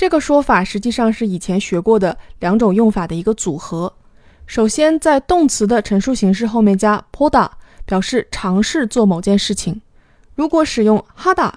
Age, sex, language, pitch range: 20-39, female, Chinese, 195-260 Hz